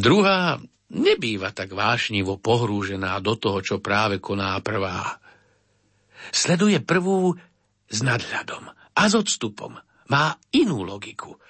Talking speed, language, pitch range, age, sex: 110 wpm, Slovak, 100-160 Hz, 60-79, male